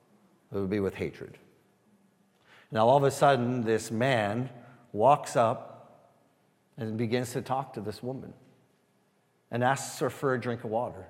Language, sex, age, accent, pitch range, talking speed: English, male, 40-59, American, 100-140 Hz, 155 wpm